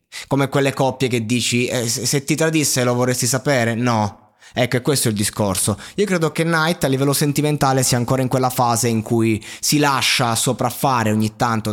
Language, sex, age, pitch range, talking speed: Italian, male, 20-39, 105-130 Hz, 195 wpm